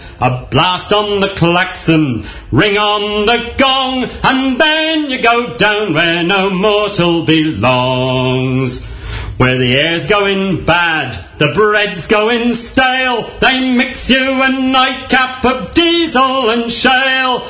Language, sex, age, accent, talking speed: English, male, 40-59, British, 140 wpm